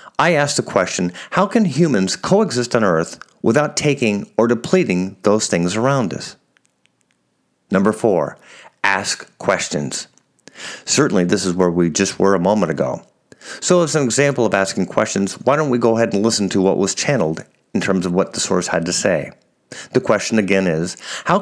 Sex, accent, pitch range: male, American, 95-140 Hz